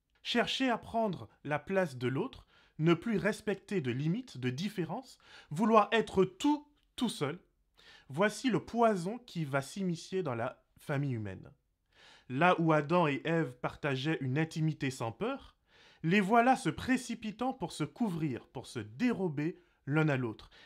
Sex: male